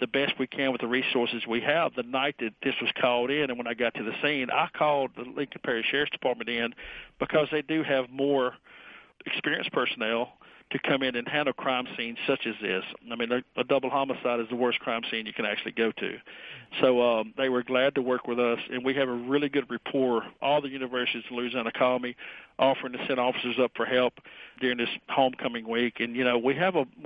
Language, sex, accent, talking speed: English, male, American, 230 wpm